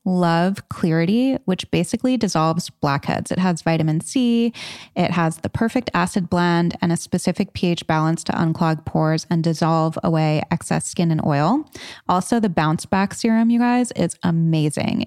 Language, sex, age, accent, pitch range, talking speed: English, female, 20-39, American, 160-200 Hz, 160 wpm